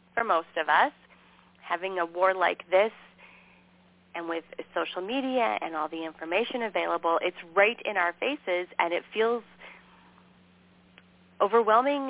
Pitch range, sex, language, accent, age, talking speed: 175-225 Hz, female, English, American, 30-49, 135 wpm